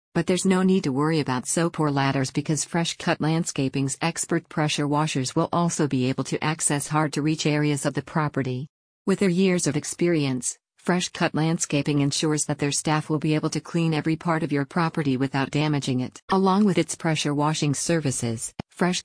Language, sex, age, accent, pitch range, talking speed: English, female, 50-69, American, 140-170 Hz, 190 wpm